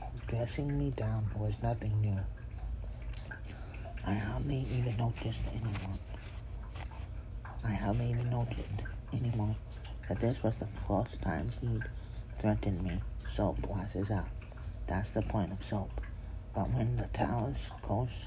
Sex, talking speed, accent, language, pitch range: male, 125 wpm, American, English, 100-115 Hz